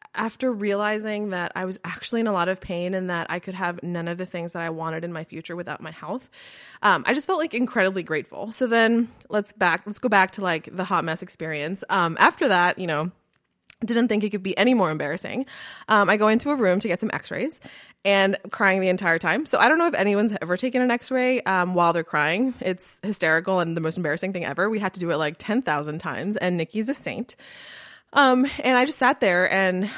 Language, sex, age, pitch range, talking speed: English, female, 20-39, 175-220 Hz, 235 wpm